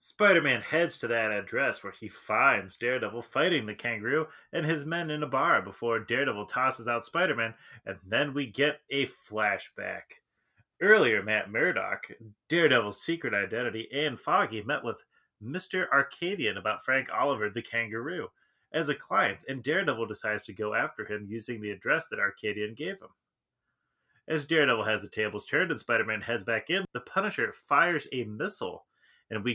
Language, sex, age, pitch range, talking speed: English, male, 30-49, 110-150 Hz, 165 wpm